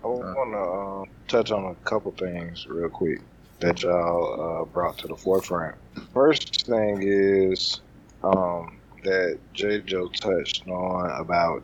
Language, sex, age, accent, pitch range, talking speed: English, male, 20-39, American, 85-100 Hz, 145 wpm